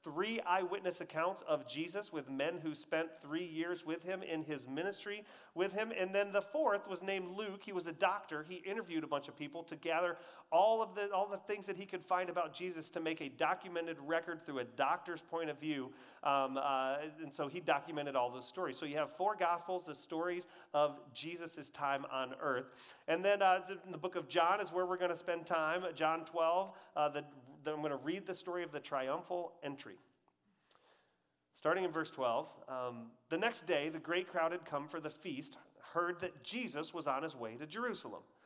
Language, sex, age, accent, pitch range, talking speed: English, male, 40-59, American, 140-180 Hz, 210 wpm